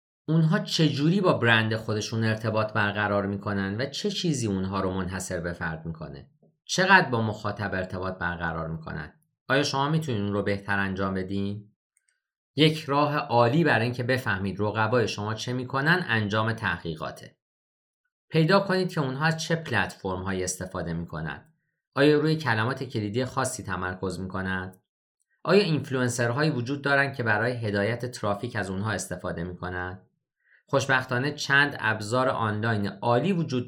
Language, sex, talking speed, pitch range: Persian, male, 135 wpm, 105-155 Hz